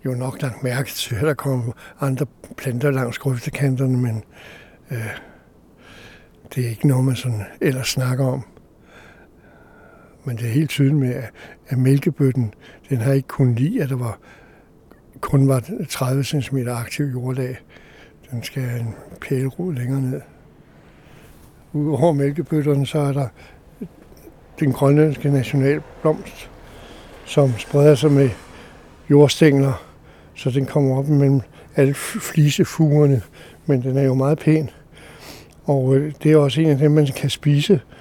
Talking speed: 140 wpm